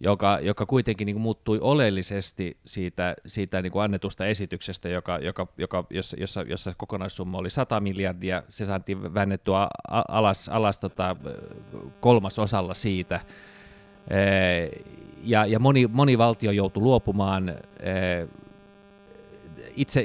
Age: 30-49